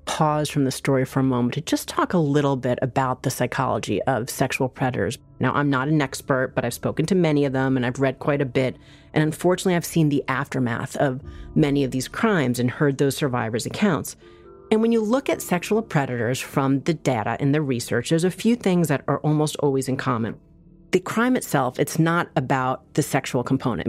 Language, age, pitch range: English, 30-49, 130-180 Hz